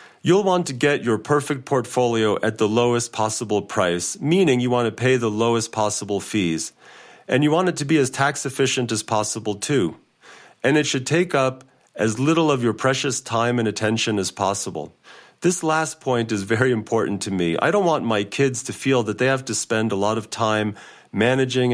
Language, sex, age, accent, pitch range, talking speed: English, male, 40-59, American, 105-130 Hz, 200 wpm